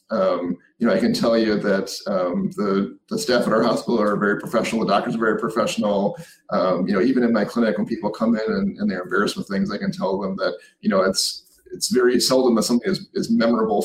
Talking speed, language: 245 wpm, English